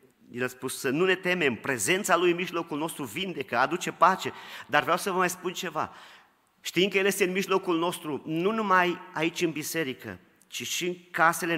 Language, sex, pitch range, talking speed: Romanian, male, 155-210 Hz, 195 wpm